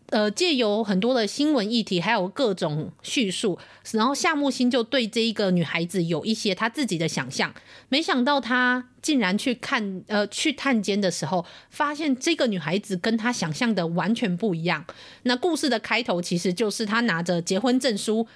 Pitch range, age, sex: 185-245 Hz, 30-49, female